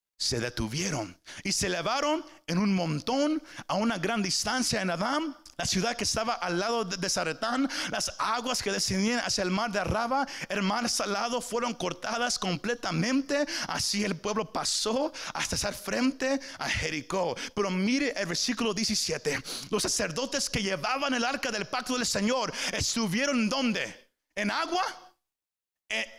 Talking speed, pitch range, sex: 150 wpm, 205-275 Hz, male